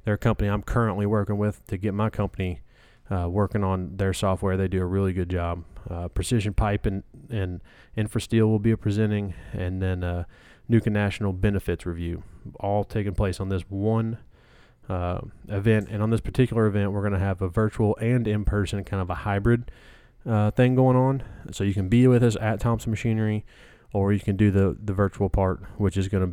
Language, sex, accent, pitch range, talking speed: English, male, American, 95-110 Hz, 195 wpm